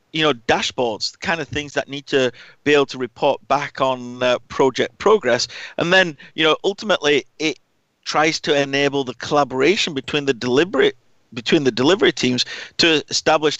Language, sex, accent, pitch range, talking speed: English, male, British, 130-160 Hz, 165 wpm